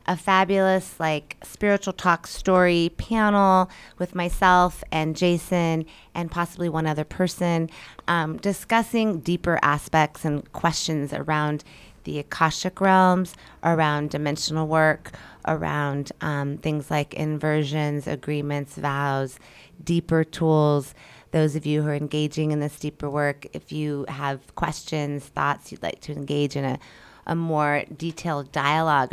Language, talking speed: English, 130 wpm